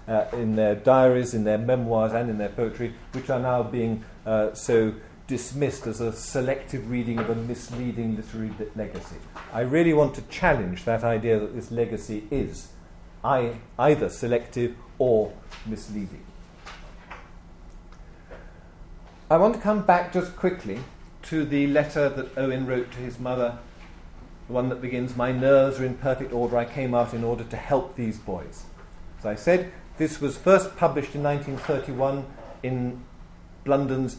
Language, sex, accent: English, male, British